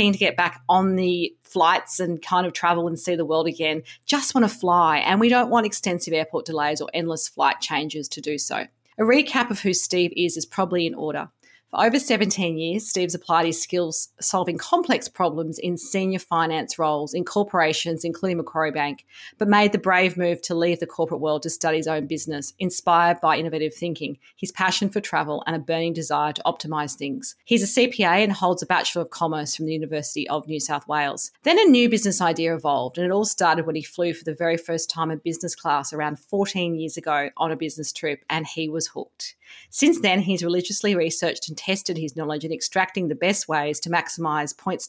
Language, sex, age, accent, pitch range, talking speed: English, female, 40-59, Australian, 160-190 Hz, 215 wpm